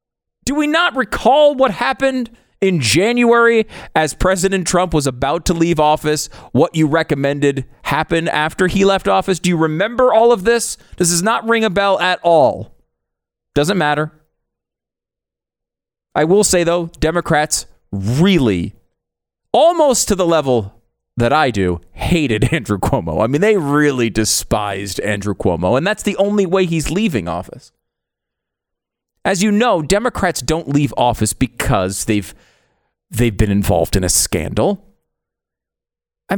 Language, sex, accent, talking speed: English, male, American, 145 wpm